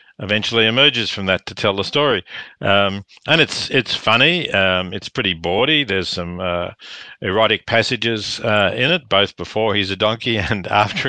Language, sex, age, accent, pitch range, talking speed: English, male, 50-69, Australian, 100-135 Hz, 175 wpm